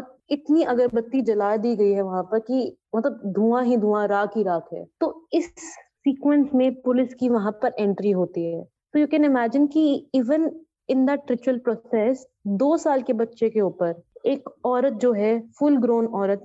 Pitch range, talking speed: 205-255 Hz, 145 wpm